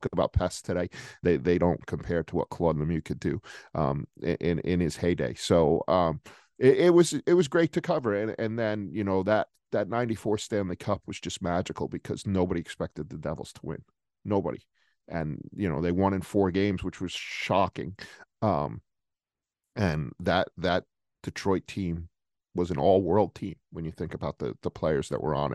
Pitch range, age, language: 85-100 Hz, 40-59, English